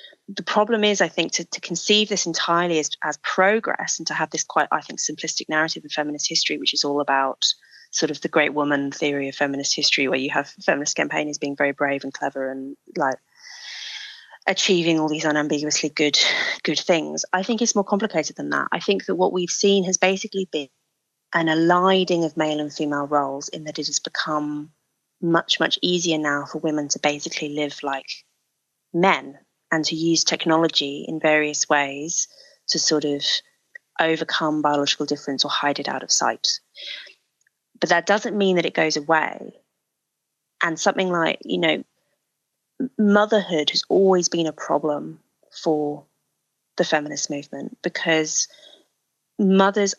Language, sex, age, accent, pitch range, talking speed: English, female, 30-49, British, 145-175 Hz, 170 wpm